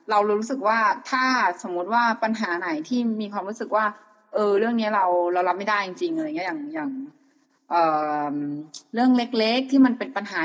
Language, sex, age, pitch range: Thai, female, 20-39, 180-235 Hz